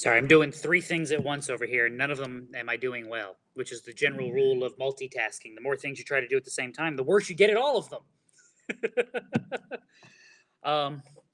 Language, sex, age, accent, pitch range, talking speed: English, male, 30-49, American, 125-165 Hz, 235 wpm